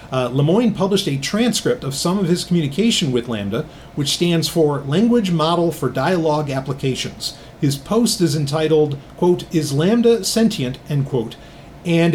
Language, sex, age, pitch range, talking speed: English, male, 30-49, 140-175 Hz, 155 wpm